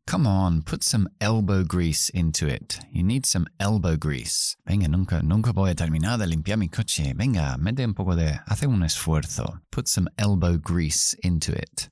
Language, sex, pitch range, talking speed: Spanish, male, 75-100 Hz, 185 wpm